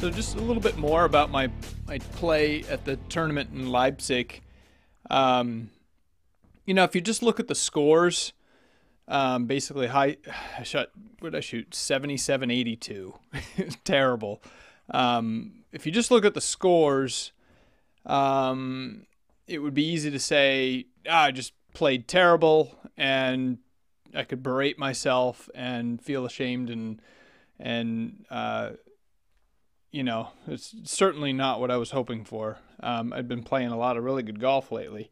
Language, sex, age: English, male, 30-49